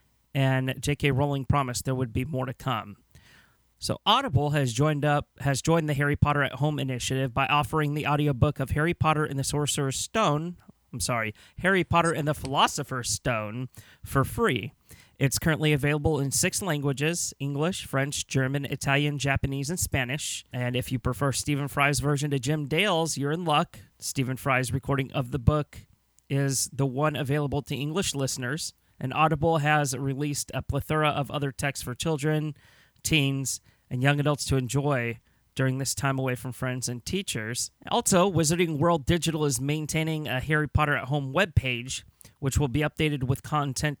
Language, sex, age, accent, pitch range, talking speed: English, male, 30-49, American, 130-150 Hz, 170 wpm